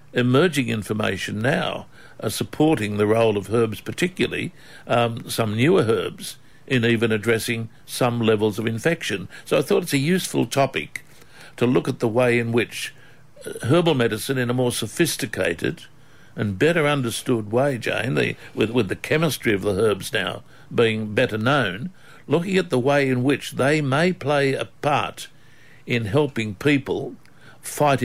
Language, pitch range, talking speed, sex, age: English, 110-140 Hz, 155 wpm, male, 60-79